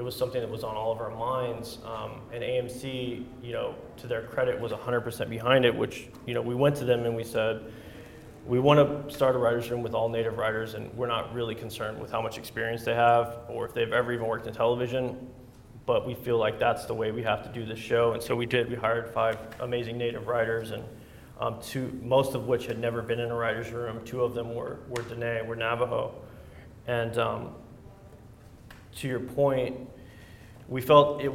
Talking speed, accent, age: 215 wpm, American, 20-39